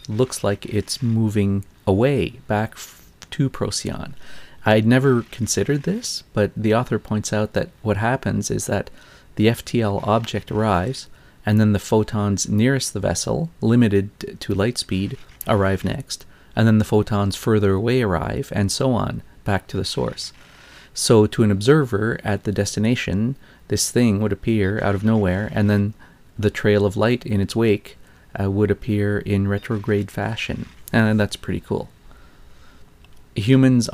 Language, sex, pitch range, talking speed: English, male, 100-115 Hz, 155 wpm